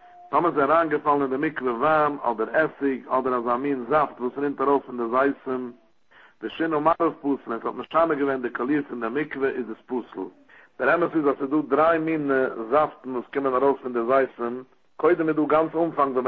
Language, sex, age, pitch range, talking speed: English, male, 60-79, 130-150 Hz, 130 wpm